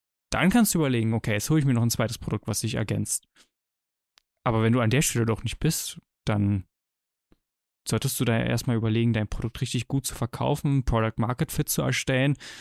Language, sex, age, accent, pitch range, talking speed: German, male, 20-39, German, 110-140 Hz, 200 wpm